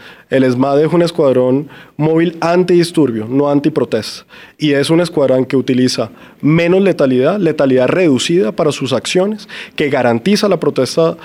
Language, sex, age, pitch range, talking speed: Spanish, male, 30-49, 135-175 Hz, 140 wpm